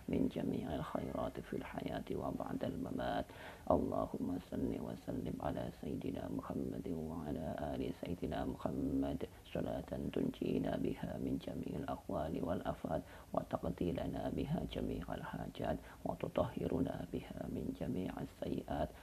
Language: Indonesian